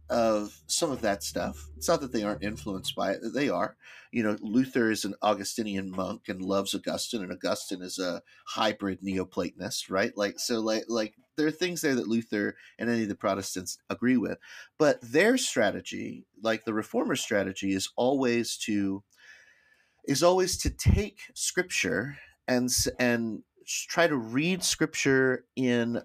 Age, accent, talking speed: 30-49, American, 165 wpm